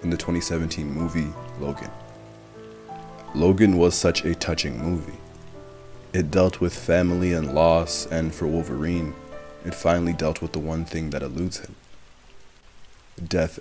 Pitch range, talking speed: 80-95 Hz, 135 wpm